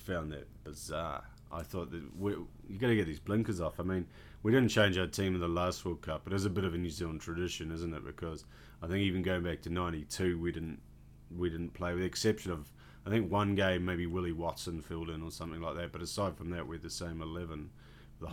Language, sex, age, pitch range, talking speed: English, male, 30-49, 85-105 Hz, 250 wpm